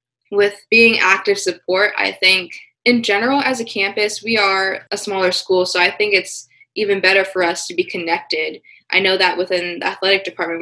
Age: 20-39